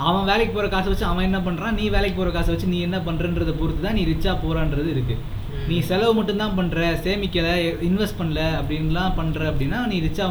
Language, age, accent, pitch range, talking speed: Tamil, 20-39, native, 155-195 Hz, 205 wpm